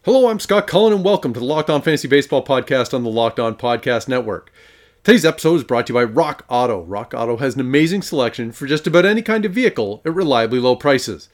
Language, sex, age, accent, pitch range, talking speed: English, male, 30-49, American, 110-145 Hz, 240 wpm